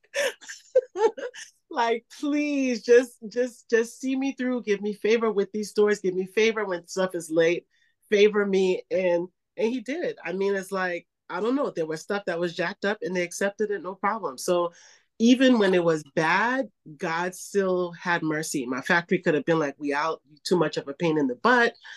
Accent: American